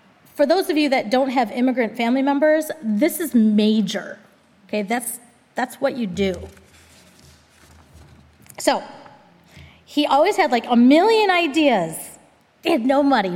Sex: female